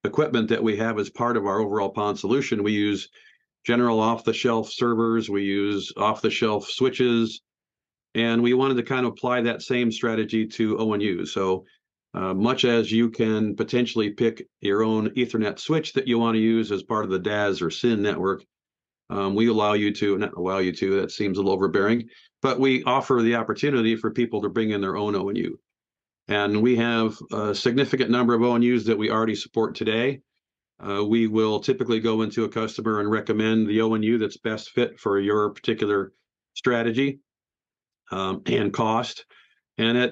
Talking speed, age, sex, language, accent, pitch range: 180 wpm, 50-69, male, English, American, 105-120 Hz